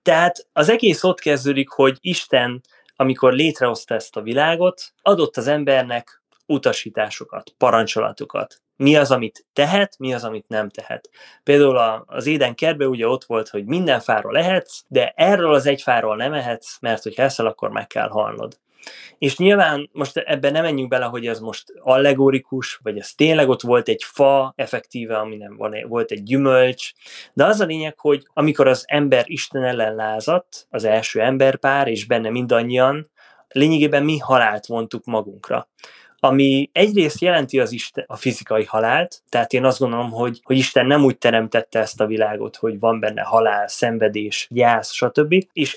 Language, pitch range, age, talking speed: Hungarian, 115-145 Hz, 20-39, 165 wpm